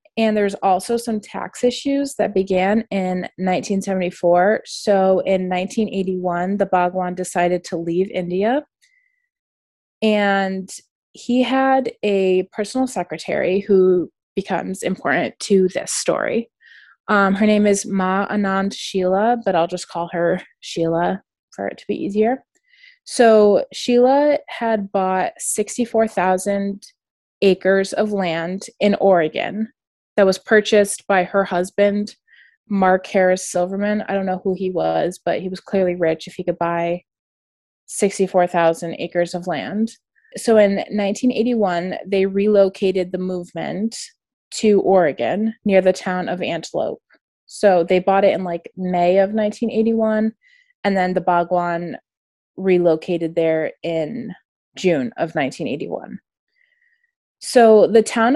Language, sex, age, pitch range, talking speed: English, female, 20-39, 180-220 Hz, 125 wpm